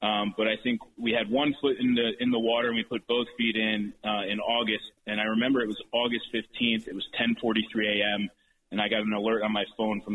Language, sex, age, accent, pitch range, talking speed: English, male, 30-49, American, 105-115 Hz, 250 wpm